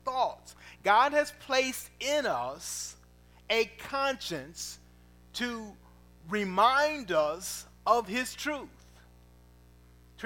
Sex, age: male, 40-59